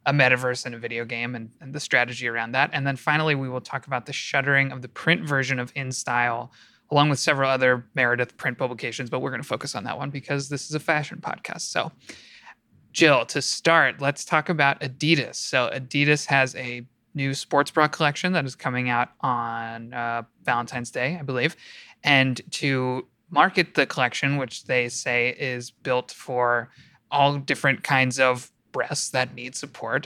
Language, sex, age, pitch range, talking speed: English, male, 20-39, 120-140 Hz, 185 wpm